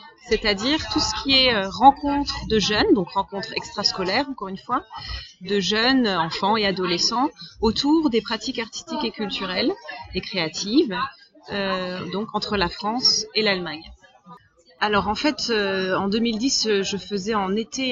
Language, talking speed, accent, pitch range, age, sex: French, 145 wpm, French, 185-230 Hz, 30-49, female